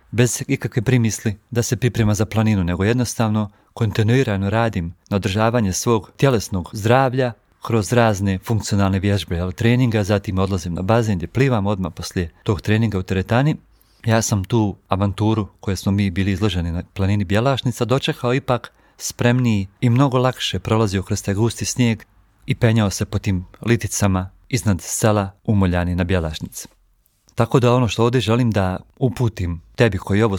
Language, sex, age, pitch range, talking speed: Croatian, male, 40-59, 95-120 Hz, 155 wpm